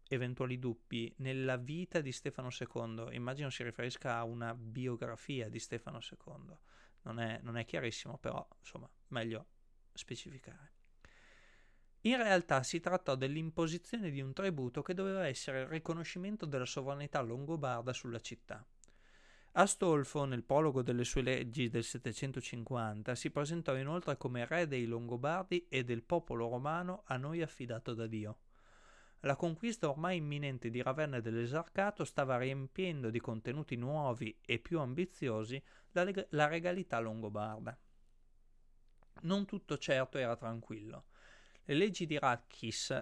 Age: 30-49